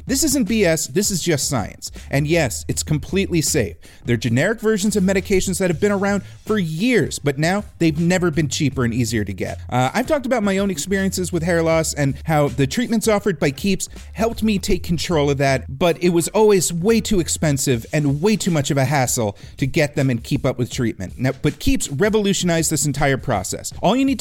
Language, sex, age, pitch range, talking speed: English, male, 40-59, 135-205 Hz, 215 wpm